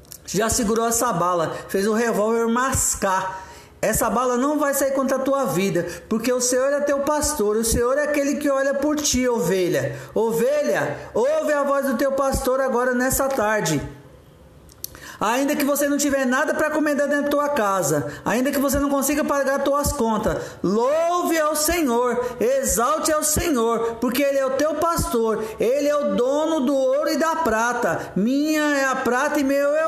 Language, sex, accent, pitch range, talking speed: Portuguese, male, Brazilian, 235-295 Hz, 185 wpm